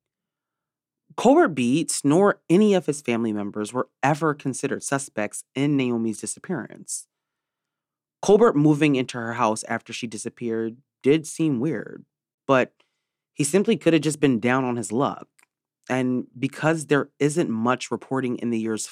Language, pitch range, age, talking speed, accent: English, 115-150 Hz, 30-49, 145 wpm, American